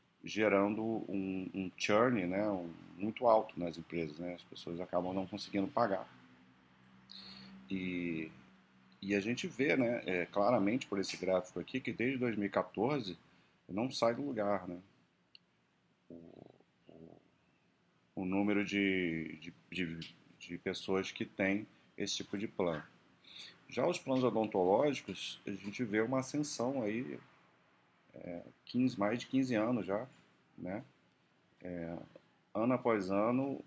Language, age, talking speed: Portuguese, 40-59, 130 wpm